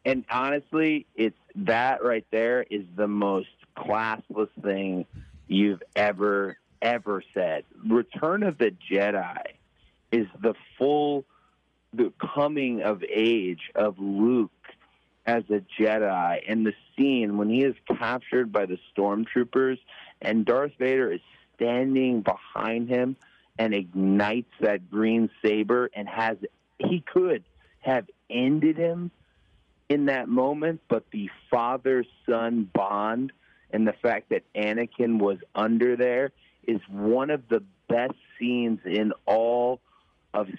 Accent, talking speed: American, 125 wpm